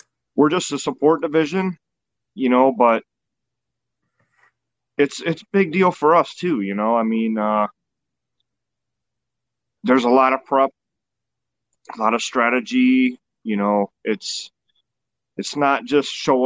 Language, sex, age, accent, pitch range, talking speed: English, male, 30-49, American, 115-150 Hz, 130 wpm